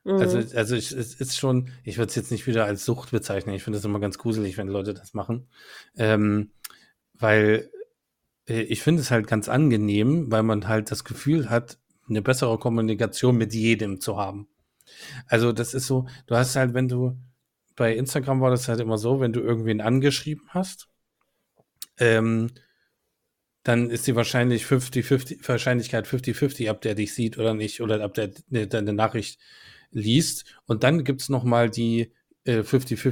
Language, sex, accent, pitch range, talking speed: German, male, German, 110-125 Hz, 170 wpm